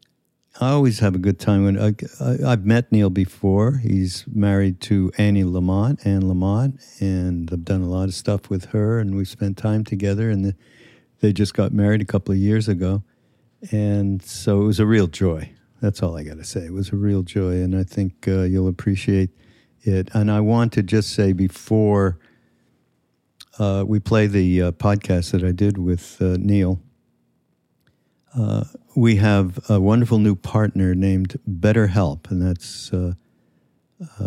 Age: 60-79